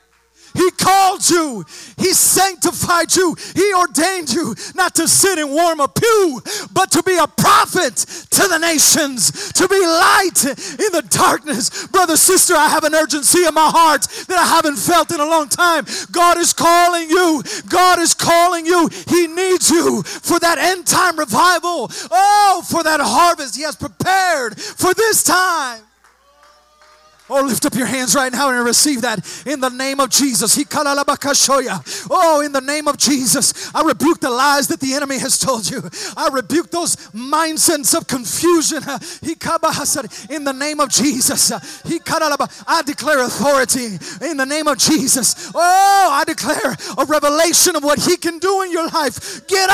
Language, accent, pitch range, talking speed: English, American, 280-350 Hz, 165 wpm